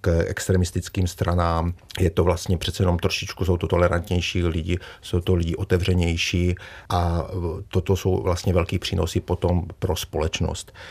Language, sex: Czech, male